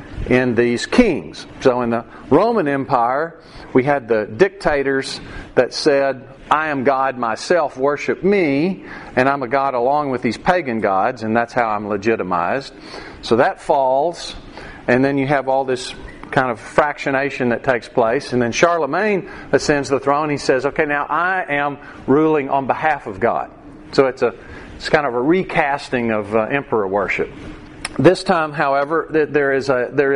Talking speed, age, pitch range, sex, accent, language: 170 wpm, 40-59, 120-150 Hz, male, American, English